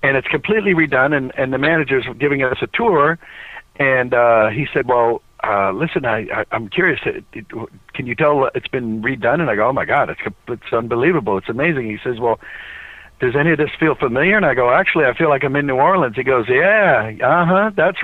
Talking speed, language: 220 wpm, English